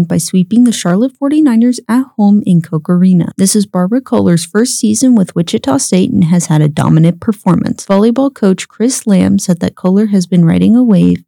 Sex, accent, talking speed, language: female, American, 195 wpm, English